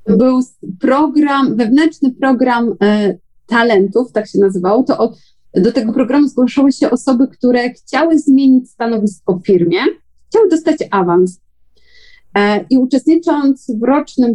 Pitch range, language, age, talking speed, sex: 200-265 Hz, Polish, 30-49, 130 wpm, female